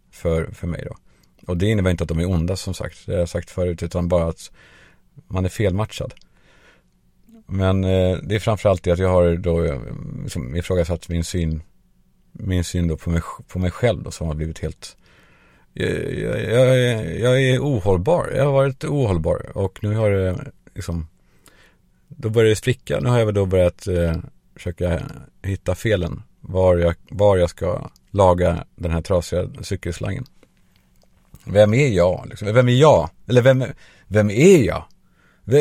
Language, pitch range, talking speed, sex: Swedish, 85-115 Hz, 175 wpm, male